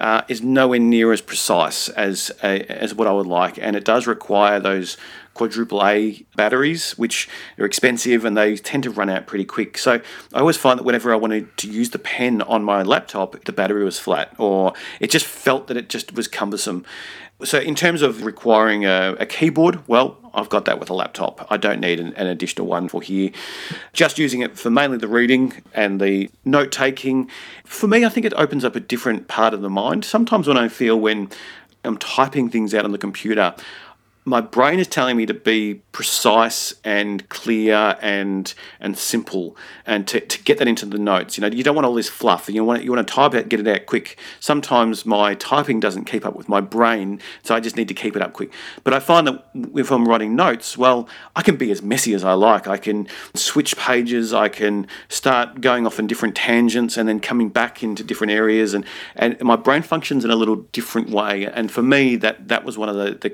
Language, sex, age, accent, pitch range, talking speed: English, male, 40-59, Australian, 105-125 Hz, 220 wpm